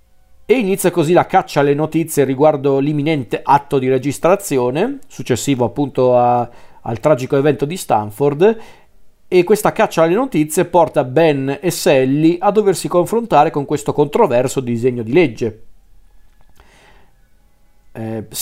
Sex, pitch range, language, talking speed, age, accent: male, 130-160 Hz, Italian, 125 wpm, 40-59, native